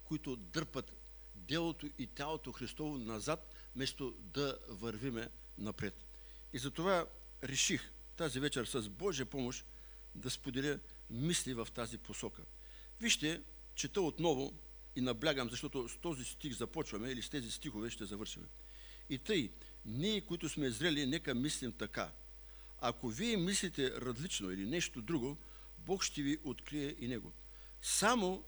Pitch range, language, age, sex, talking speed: 105-155 Hz, English, 60-79, male, 135 wpm